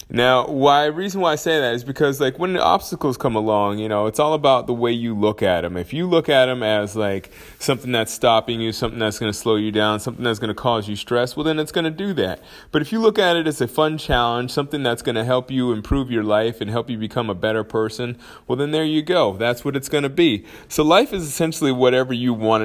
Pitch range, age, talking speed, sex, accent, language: 110-145 Hz, 30-49, 270 wpm, male, American, English